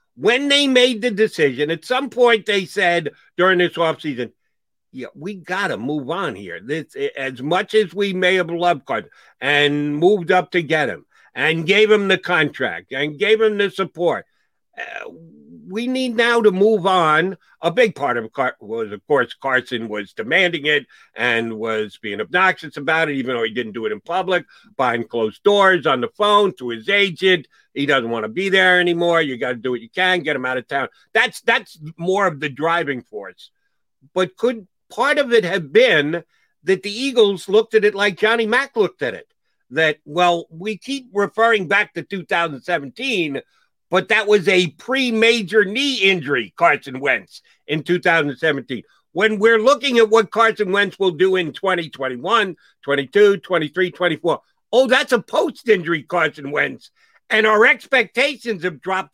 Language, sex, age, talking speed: English, male, 60-79, 180 wpm